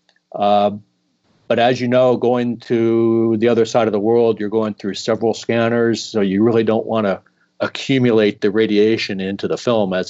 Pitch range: 105-125 Hz